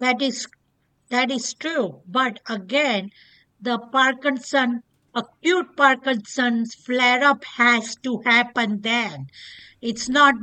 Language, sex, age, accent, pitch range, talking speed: English, female, 60-79, Indian, 240-285 Hz, 110 wpm